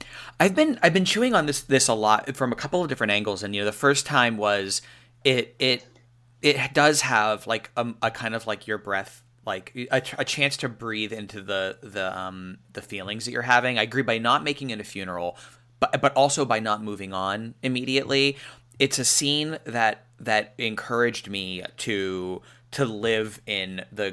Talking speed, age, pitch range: 195 wpm, 30-49, 105-135 Hz